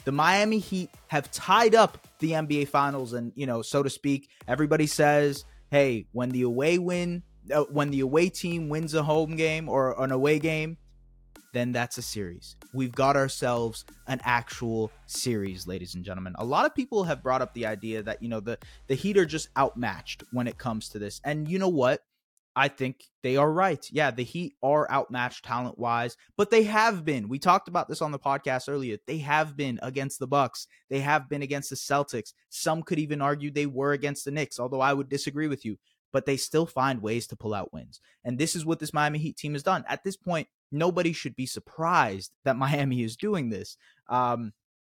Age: 20-39